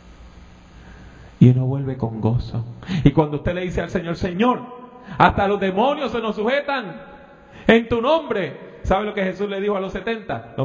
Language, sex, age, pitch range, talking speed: English, male, 30-49, 125-210 Hz, 180 wpm